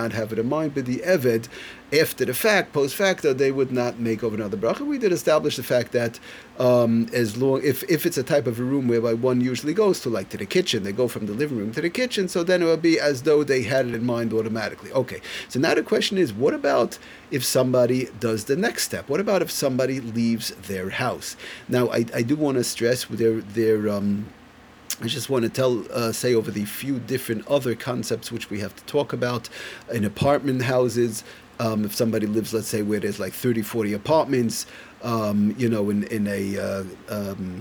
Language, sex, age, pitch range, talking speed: English, male, 40-59, 110-140 Hz, 225 wpm